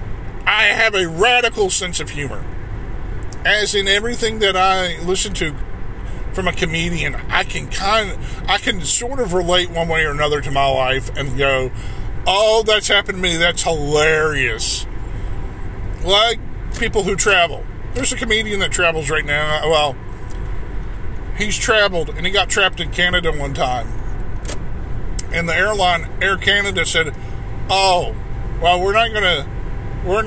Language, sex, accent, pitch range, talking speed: English, male, American, 110-180 Hz, 155 wpm